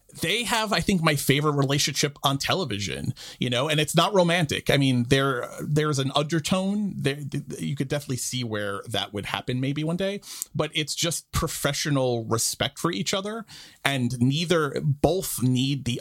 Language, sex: English, male